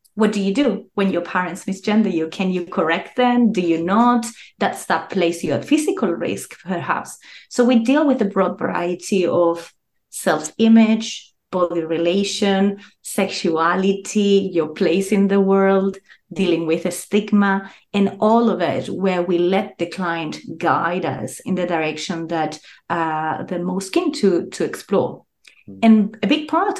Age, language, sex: 30-49, English, female